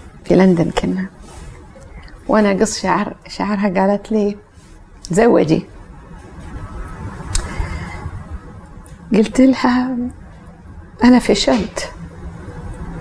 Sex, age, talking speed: female, 40-59, 65 wpm